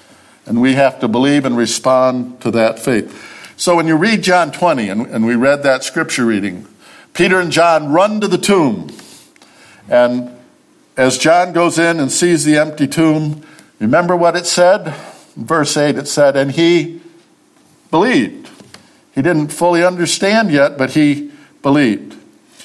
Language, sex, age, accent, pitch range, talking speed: English, male, 60-79, American, 130-175 Hz, 155 wpm